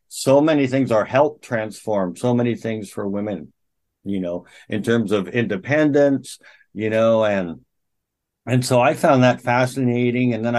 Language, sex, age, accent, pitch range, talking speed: English, male, 60-79, American, 110-130 Hz, 160 wpm